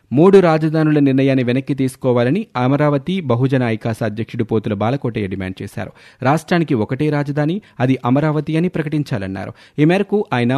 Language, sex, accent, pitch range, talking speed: Telugu, male, native, 115-145 Hz, 130 wpm